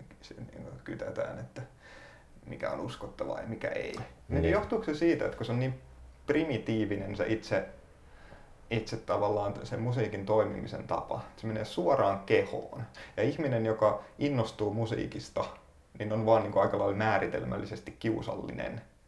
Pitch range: 105-115 Hz